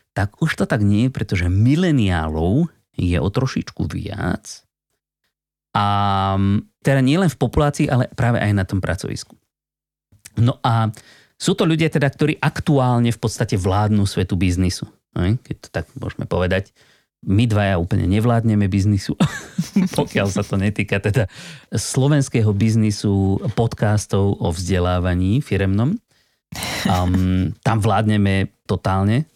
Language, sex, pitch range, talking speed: Slovak, male, 95-125 Hz, 125 wpm